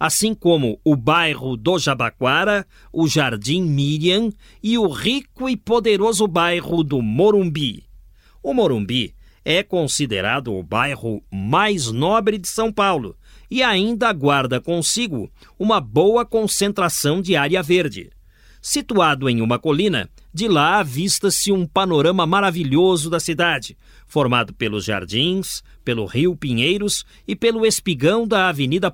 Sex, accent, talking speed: male, Brazilian, 125 wpm